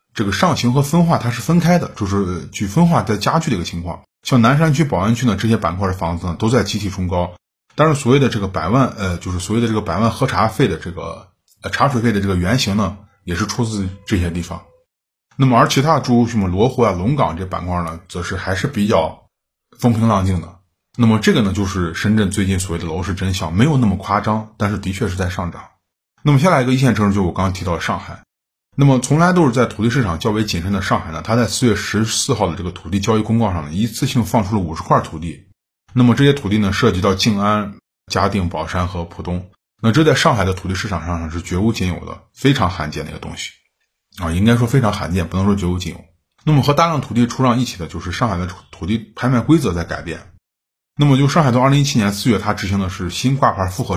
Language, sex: Chinese, male